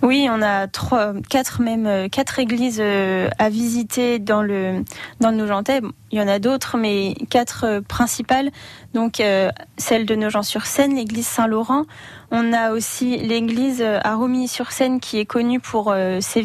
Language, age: French, 20-39